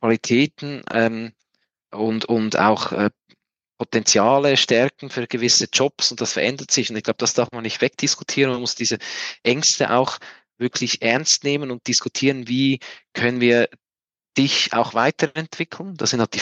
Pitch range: 115-135 Hz